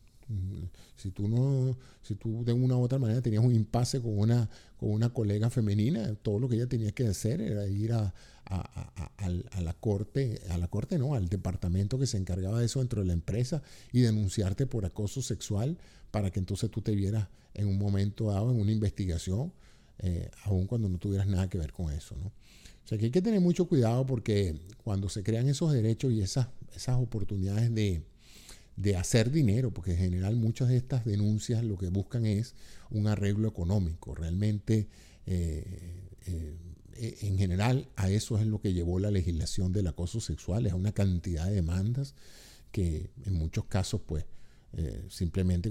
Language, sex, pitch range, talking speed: Spanish, male, 90-115 Hz, 190 wpm